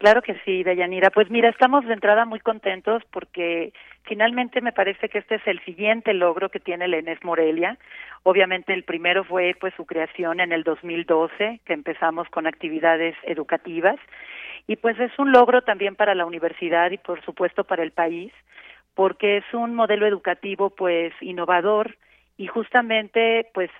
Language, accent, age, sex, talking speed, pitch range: Spanish, Mexican, 40-59, female, 165 wpm, 175-210 Hz